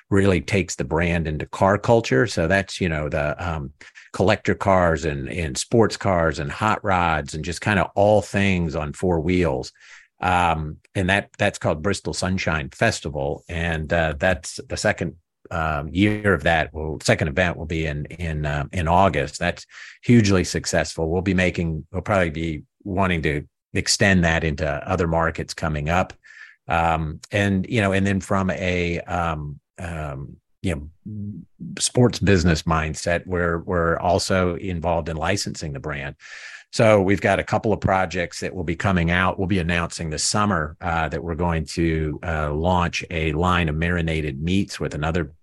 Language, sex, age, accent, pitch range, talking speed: English, male, 50-69, American, 80-95 Hz, 170 wpm